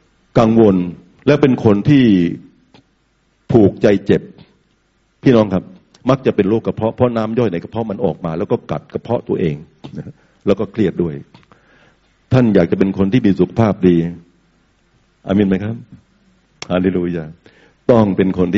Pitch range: 90-130 Hz